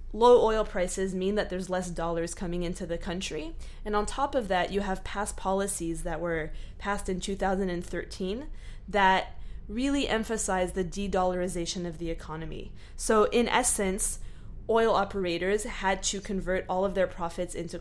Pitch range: 175-205 Hz